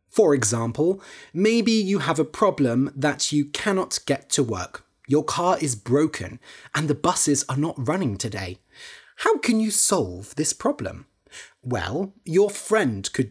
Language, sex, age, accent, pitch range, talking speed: English, male, 30-49, British, 125-190 Hz, 155 wpm